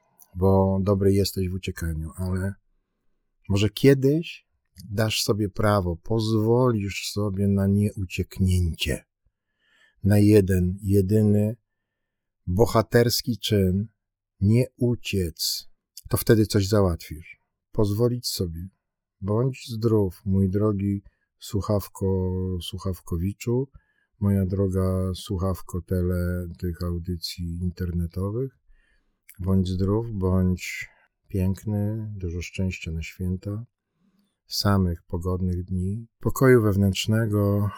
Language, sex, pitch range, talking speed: Polish, male, 90-105 Hz, 85 wpm